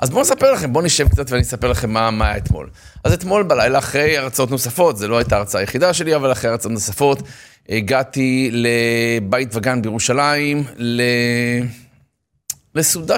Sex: male